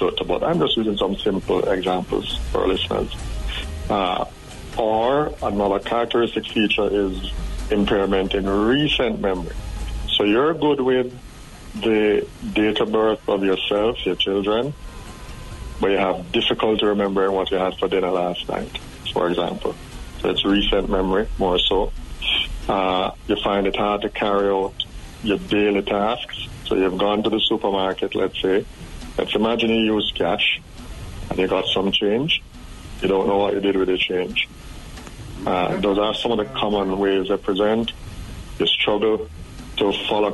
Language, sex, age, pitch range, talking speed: English, male, 60-79, 95-105 Hz, 150 wpm